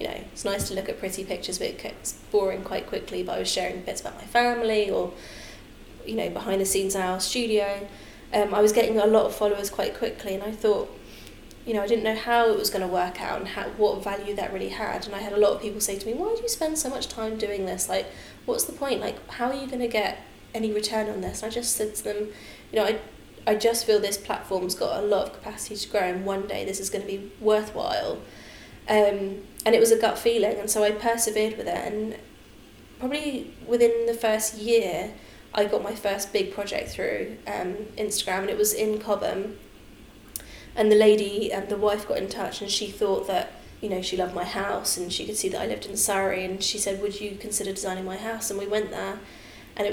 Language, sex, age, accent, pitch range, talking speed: English, female, 10-29, British, 195-220 Hz, 245 wpm